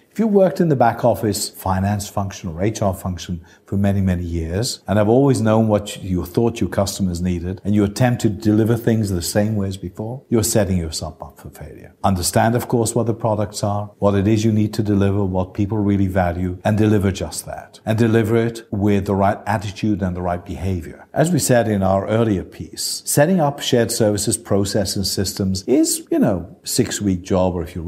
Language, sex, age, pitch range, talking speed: English, male, 50-69, 95-115 Hz, 210 wpm